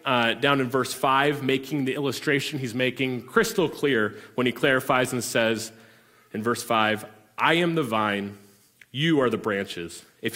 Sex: male